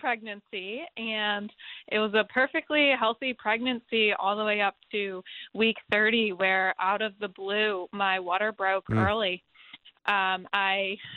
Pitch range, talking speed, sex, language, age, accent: 195-225 Hz, 140 wpm, female, English, 20-39, American